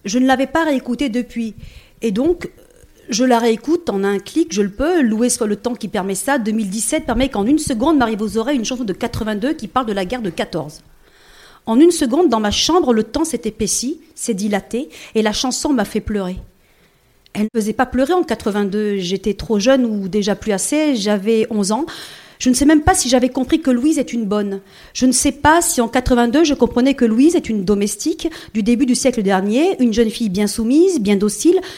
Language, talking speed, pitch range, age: French, 220 wpm, 210-270 Hz, 40-59